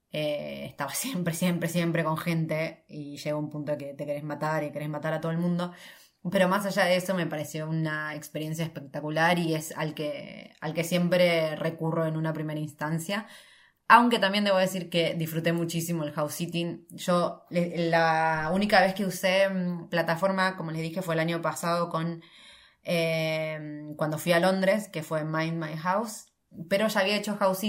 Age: 20-39